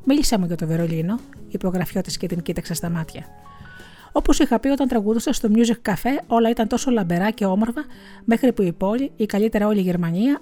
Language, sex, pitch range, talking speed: Greek, female, 185-235 Hz, 205 wpm